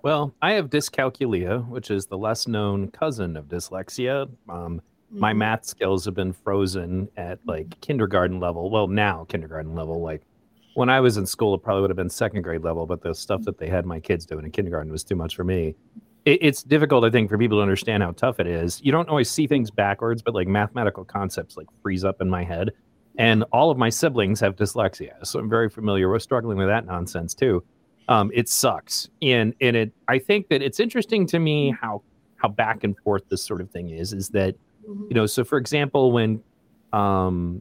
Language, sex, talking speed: English, male, 215 wpm